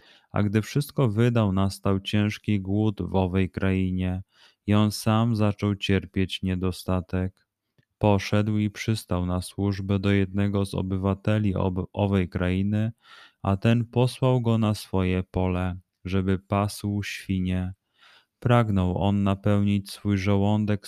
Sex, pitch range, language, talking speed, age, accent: male, 95-105 Hz, Polish, 120 wpm, 20-39, native